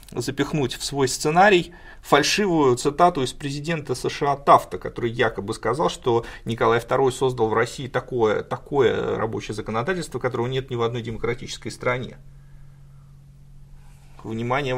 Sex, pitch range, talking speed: male, 115-145 Hz, 125 wpm